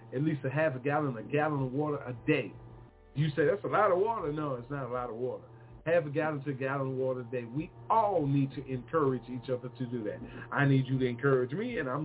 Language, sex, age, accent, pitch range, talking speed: English, male, 40-59, American, 125-150 Hz, 270 wpm